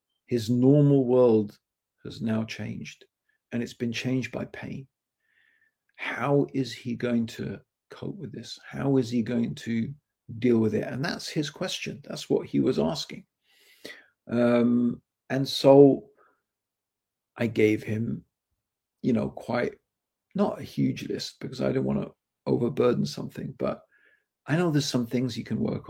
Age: 50-69